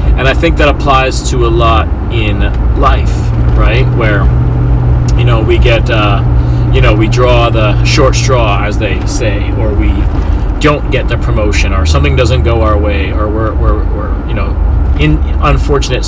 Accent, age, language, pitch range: American, 30-49, English, 75-120 Hz